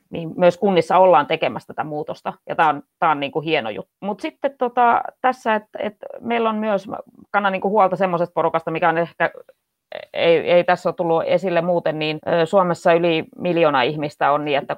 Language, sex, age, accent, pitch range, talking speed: Finnish, female, 30-49, native, 150-180 Hz, 185 wpm